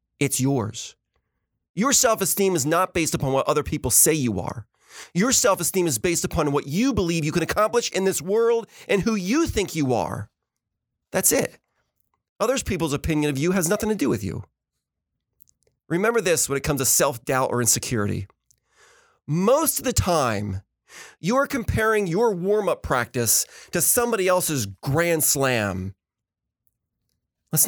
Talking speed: 155 wpm